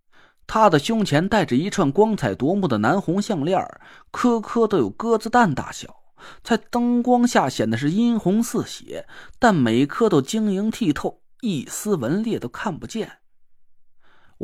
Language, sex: Chinese, male